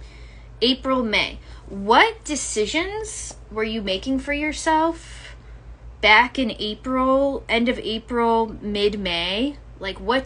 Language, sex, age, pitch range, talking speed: English, female, 10-29, 170-230 Hz, 105 wpm